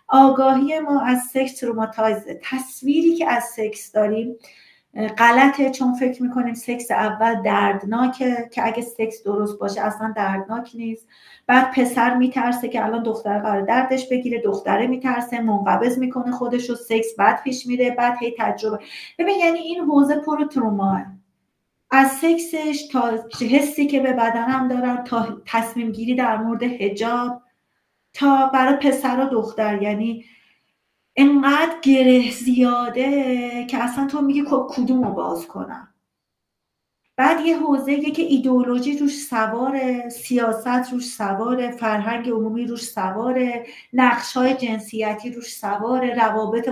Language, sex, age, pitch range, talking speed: Persian, female, 40-59, 225-270 Hz, 130 wpm